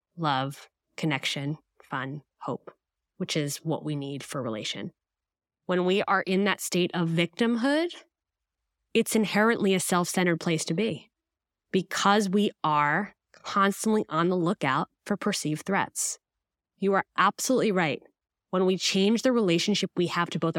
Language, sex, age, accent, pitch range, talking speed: English, female, 20-39, American, 155-200 Hz, 145 wpm